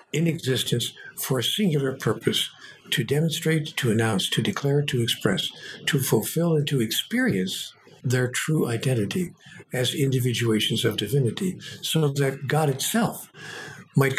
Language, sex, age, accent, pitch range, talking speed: English, male, 60-79, American, 125-165 Hz, 130 wpm